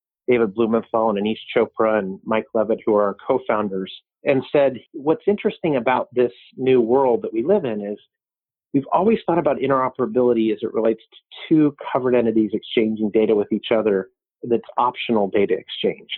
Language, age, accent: English, 40-59, American